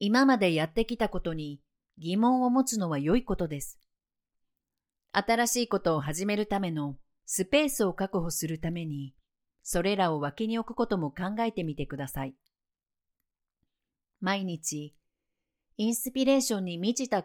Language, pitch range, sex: Japanese, 150-235 Hz, female